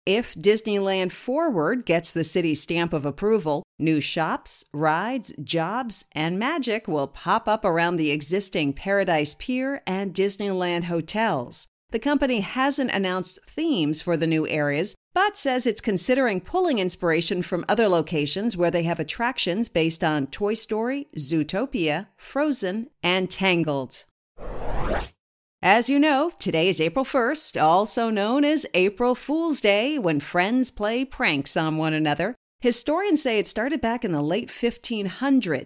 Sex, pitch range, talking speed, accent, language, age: female, 165-255 Hz, 140 wpm, American, English, 50-69